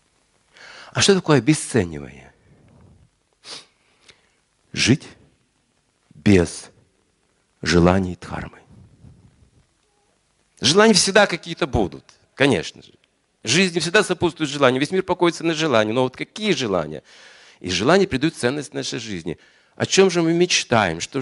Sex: male